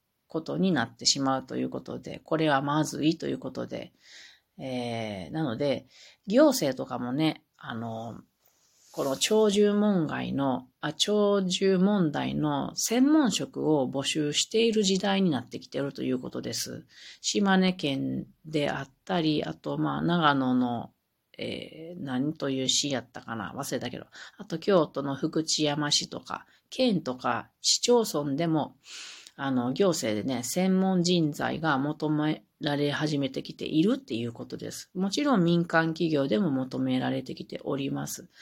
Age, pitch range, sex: 40-59, 135-190 Hz, female